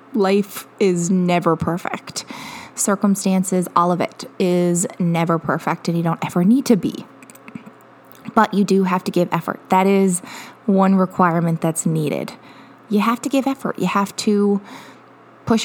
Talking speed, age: 155 wpm, 20-39